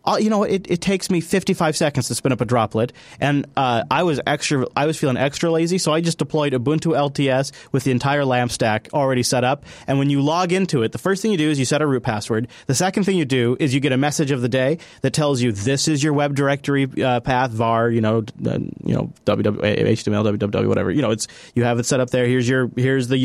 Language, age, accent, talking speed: English, 30-49, American, 260 wpm